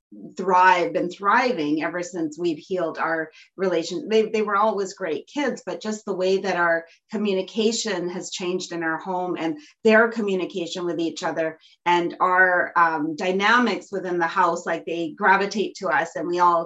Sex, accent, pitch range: female, American, 170-200 Hz